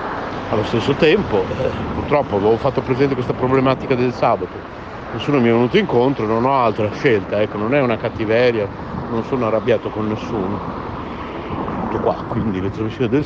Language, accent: Italian, native